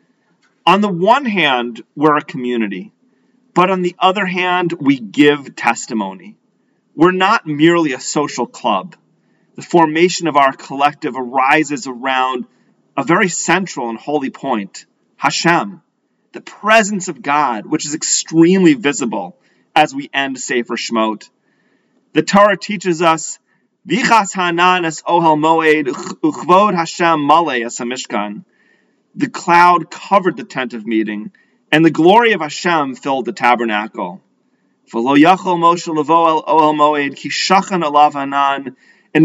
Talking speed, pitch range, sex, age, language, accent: 115 wpm, 130-180 Hz, male, 30-49, English, American